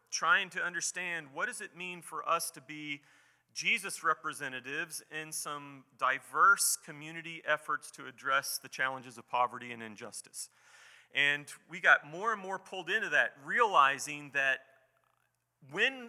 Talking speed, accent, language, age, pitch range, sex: 140 wpm, American, English, 40-59, 140-180 Hz, male